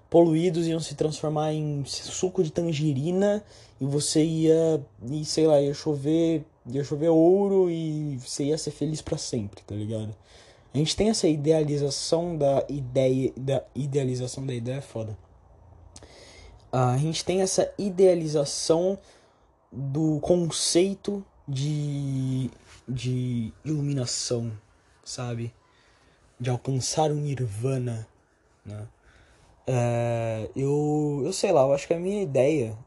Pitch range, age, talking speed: 120-150 Hz, 20-39, 125 wpm